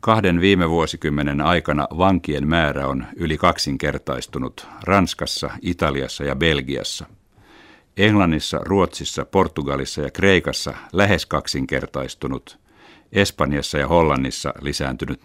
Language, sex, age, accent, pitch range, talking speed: Finnish, male, 60-79, native, 70-85 Hz, 95 wpm